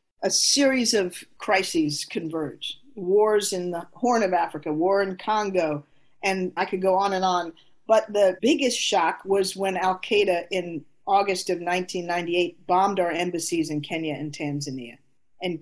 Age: 50-69